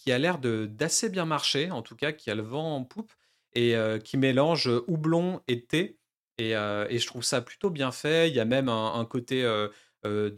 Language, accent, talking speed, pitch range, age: French, French, 230 wpm, 115-155 Hz, 40-59